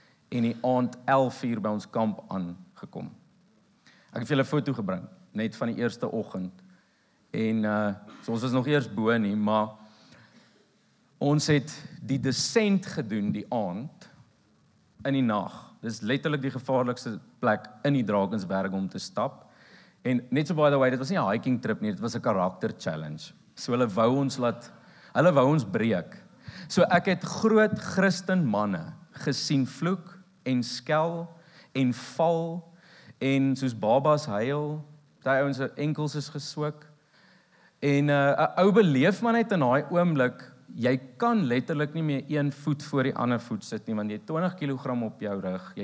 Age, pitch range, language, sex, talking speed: 50-69, 115-155 Hz, English, male, 170 wpm